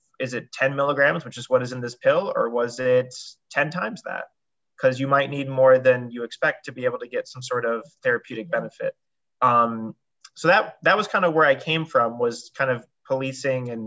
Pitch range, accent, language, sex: 125-145 Hz, American, English, male